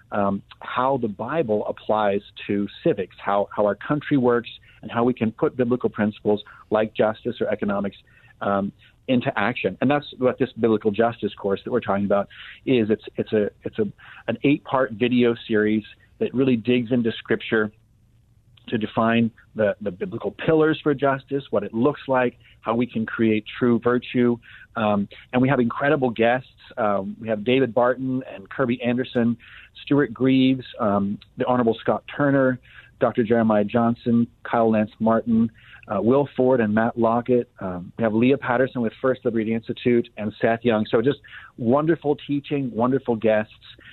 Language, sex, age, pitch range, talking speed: English, male, 40-59, 110-125 Hz, 165 wpm